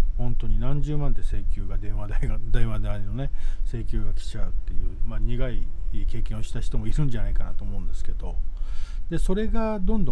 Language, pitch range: Japanese, 90-135 Hz